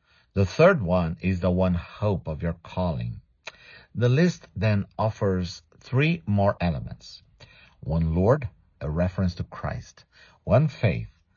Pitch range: 85-110 Hz